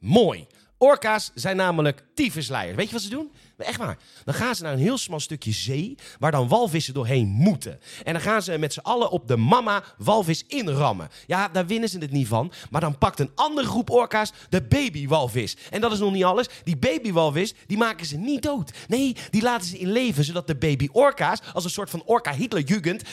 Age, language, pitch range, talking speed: 30-49, Dutch, 125-190 Hz, 210 wpm